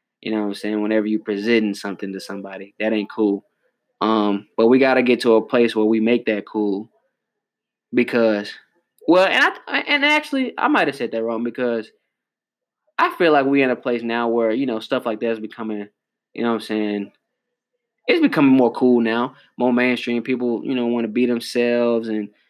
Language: English